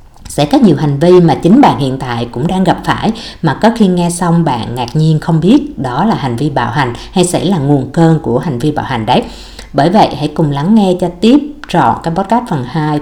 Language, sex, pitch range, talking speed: Vietnamese, female, 135-180 Hz, 250 wpm